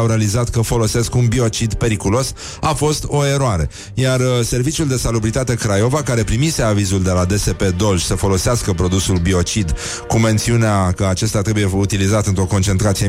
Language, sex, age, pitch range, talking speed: Romanian, male, 30-49, 100-130 Hz, 165 wpm